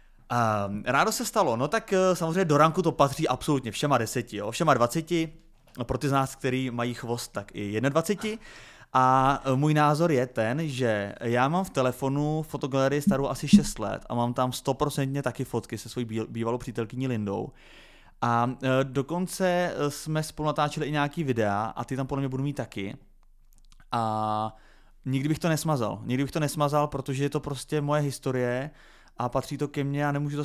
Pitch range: 115-145 Hz